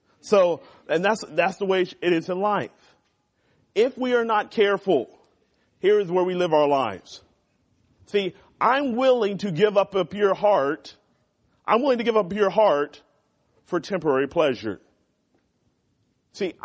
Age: 40-59